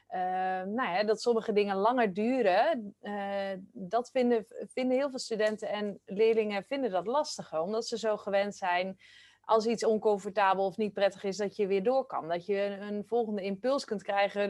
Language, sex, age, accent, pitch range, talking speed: Dutch, female, 30-49, Dutch, 205-240 Hz, 180 wpm